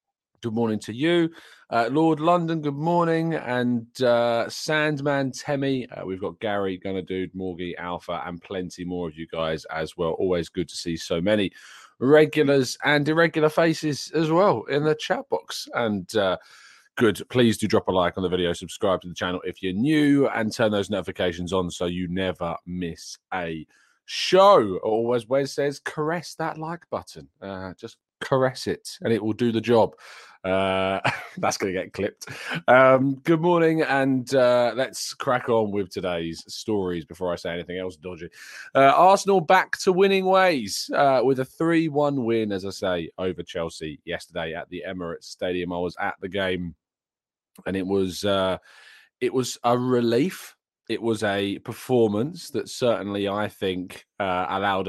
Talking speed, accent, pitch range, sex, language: 175 wpm, British, 95-150 Hz, male, English